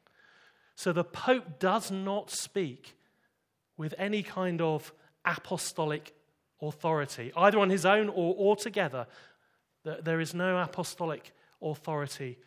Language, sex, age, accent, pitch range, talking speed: English, male, 30-49, British, 135-175 Hz, 110 wpm